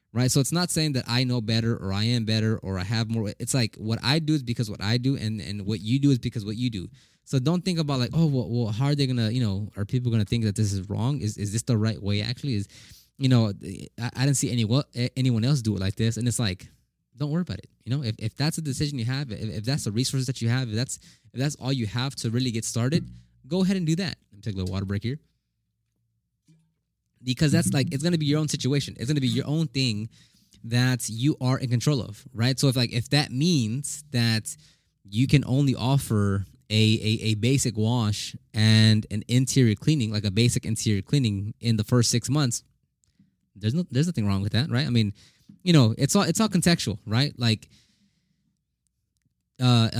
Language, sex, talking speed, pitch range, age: English, male, 245 wpm, 110-140 Hz, 20-39